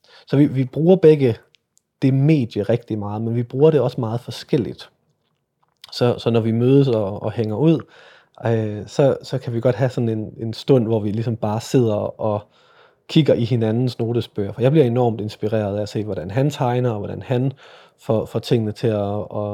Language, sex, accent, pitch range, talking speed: Danish, male, native, 110-135 Hz, 205 wpm